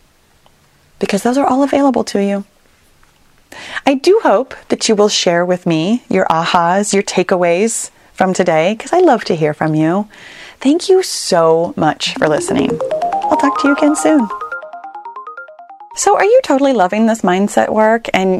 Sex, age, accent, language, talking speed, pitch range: female, 30-49, American, English, 165 wpm, 175-270 Hz